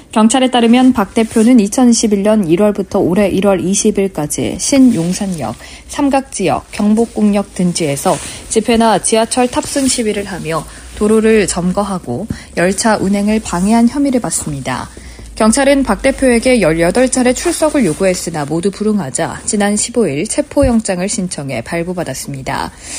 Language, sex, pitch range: Korean, female, 180-240 Hz